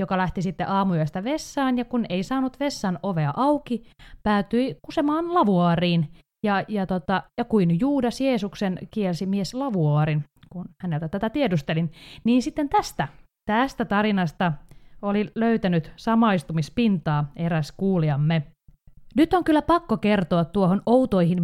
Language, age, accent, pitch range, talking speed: Finnish, 30-49, native, 170-230 Hz, 130 wpm